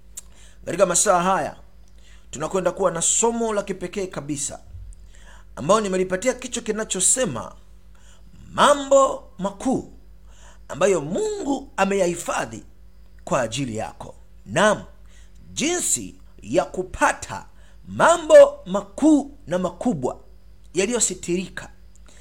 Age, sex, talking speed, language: 50-69, male, 85 wpm, Swahili